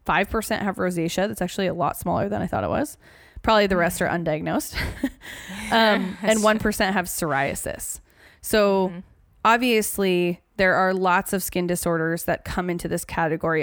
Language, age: English, 20-39